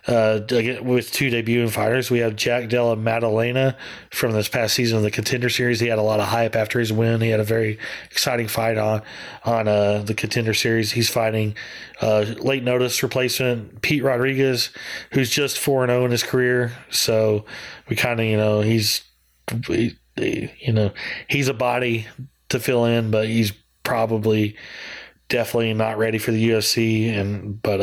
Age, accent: 30-49, American